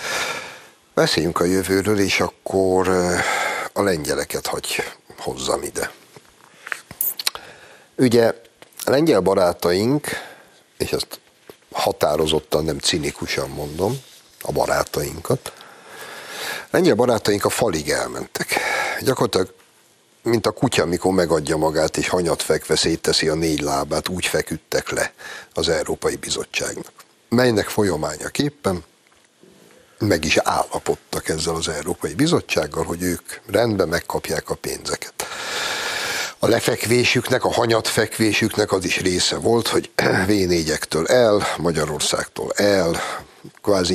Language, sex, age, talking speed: Hungarian, male, 60-79, 105 wpm